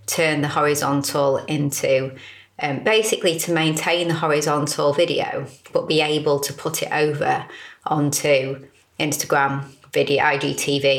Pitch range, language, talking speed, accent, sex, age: 140-175 Hz, English, 120 wpm, British, female, 30-49